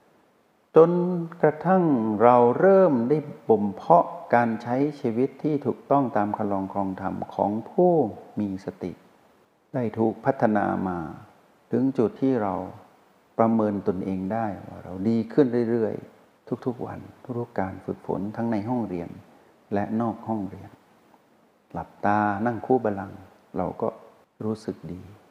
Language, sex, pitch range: Thai, male, 95-120 Hz